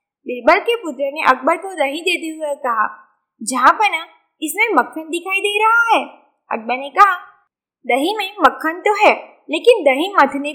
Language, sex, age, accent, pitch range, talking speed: Gujarati, female, 20-39, native, 275-390 Hz, 165 wpm